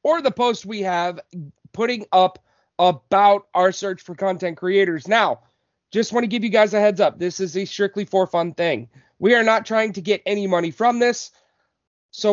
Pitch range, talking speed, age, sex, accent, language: 195-255 Hz, 200 wpm, 30-49, male, American, English